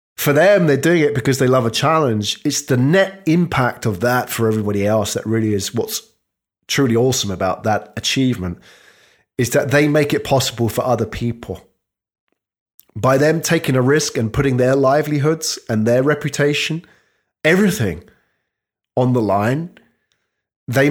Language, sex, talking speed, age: English, male, 155 wpm, 30-49